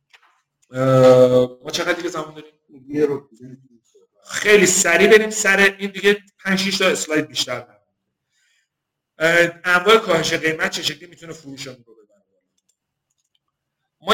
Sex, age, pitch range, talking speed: male, 50-69, 140-185 Hz, 105 wpm